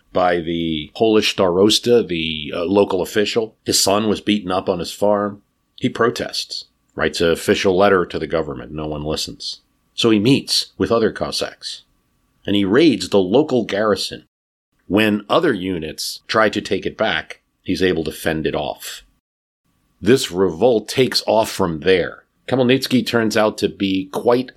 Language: English